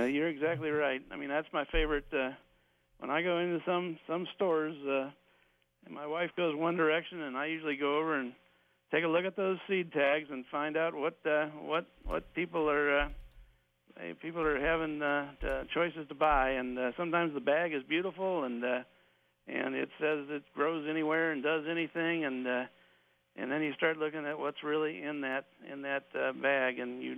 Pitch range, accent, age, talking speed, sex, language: 125-155 Hz, American, 60-79, 200 wpm, male, English